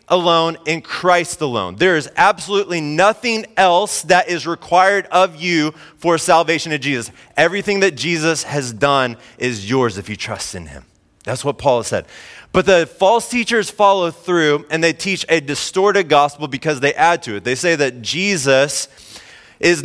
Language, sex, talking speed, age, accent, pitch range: English, male, 170 wpm, 30-49, American, 150-200 Hz